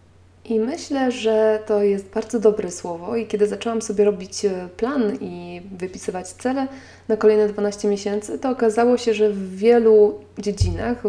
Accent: native